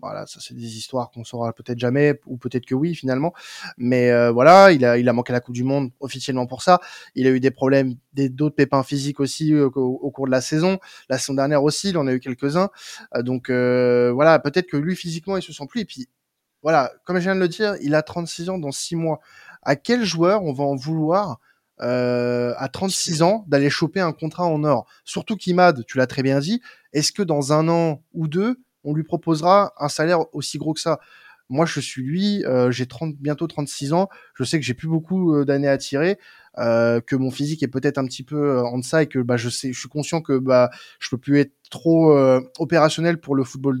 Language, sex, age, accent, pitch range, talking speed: French, male, 20-39, French, 130-165 Hz, 235 wpm